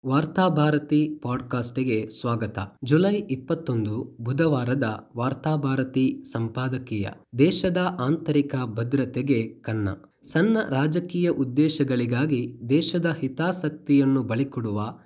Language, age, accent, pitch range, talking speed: Kannada, 20-39, native, 120-150 Hz, 70 wpm